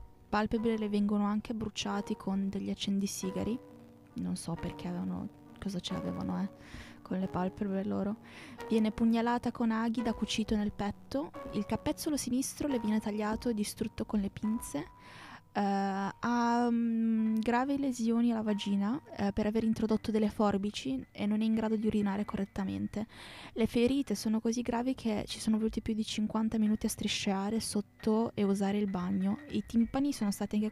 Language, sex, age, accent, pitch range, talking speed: Italian, female, 20-39, native, 195-235 Hz, 165 wpm